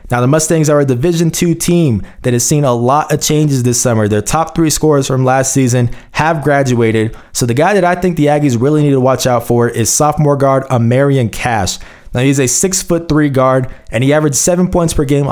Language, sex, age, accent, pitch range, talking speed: English, male, 20-39, American, 120-155 Hz, 230 wpm